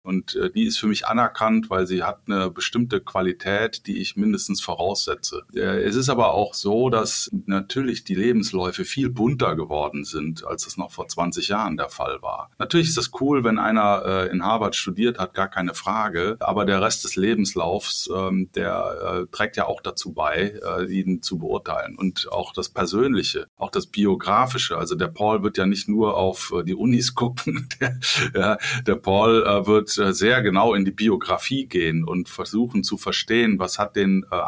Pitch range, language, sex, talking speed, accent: 95-125 Hz, German, male, 175 wpm, German